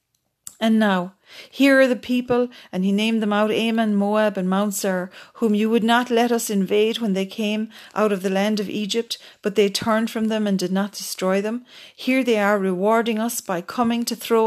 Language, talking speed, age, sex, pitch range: English, 210 wpm, 40-59, female, 185-220 Hz